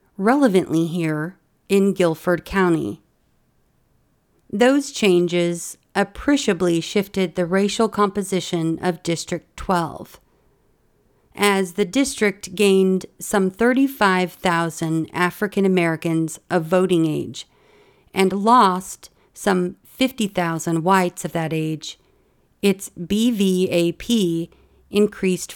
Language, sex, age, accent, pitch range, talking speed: English, female, 40-59, American, 175-205 Hz, 85 wpm